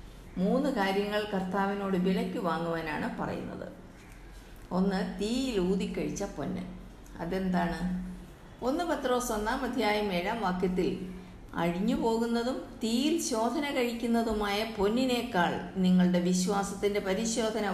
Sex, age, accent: female, 50-69, native